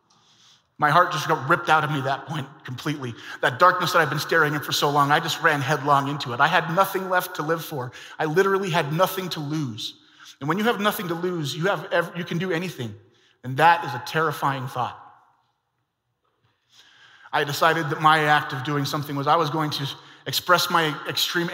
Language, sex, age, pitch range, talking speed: English, male, 30-49, 130-160 Hz, 210 wpm